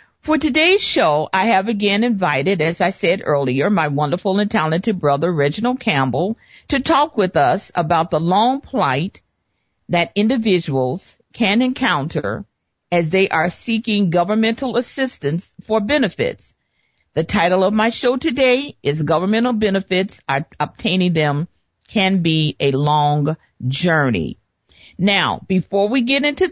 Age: 50-69